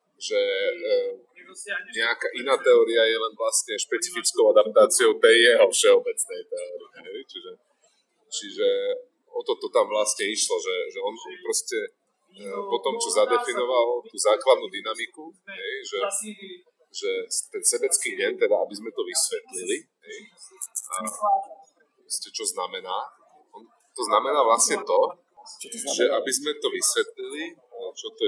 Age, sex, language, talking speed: 30-49, male, Slovak, 135 wpm